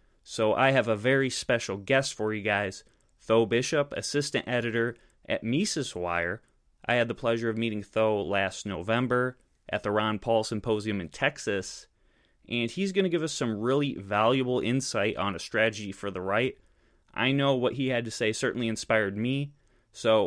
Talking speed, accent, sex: 180 wpm, American, male